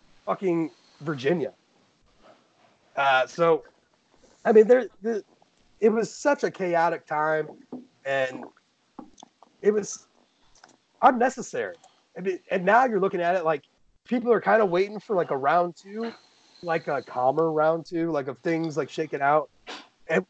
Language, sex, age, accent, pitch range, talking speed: English, male, 30-49, American, 145-220 Hz, 145 wpm